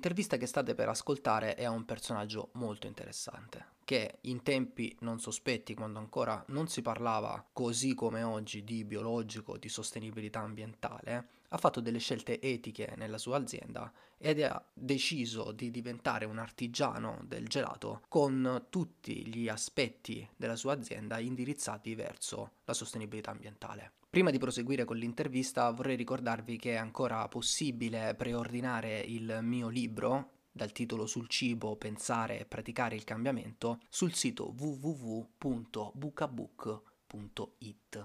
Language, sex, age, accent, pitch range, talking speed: Italian, male, 20-39, native, 110-125 Hz, 135 wpm